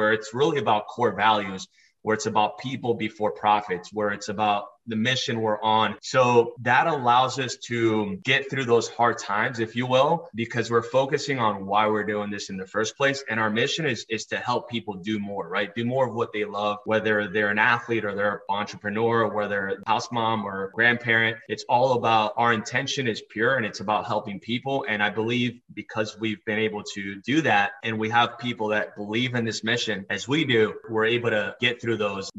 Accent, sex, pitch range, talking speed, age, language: American, male, 105-120 Hz, 210 wpm, 20-39, English